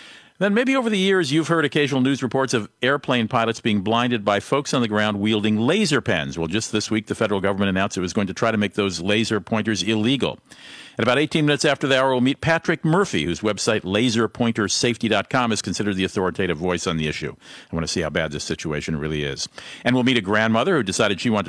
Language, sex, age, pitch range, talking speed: English, male, 50-69, 100-135 Hz, 230 wpm